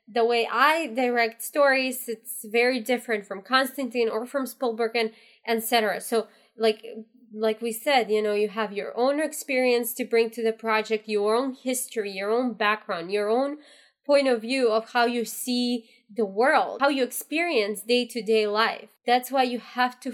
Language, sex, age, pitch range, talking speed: English, female, 20-39, 220-255 Hz, 180 wpm